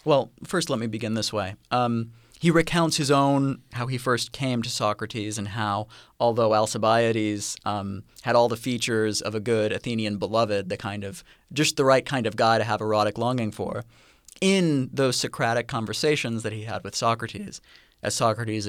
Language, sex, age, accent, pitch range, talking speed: English, male, 30-49, American, 100-120 Hz, 185 wpm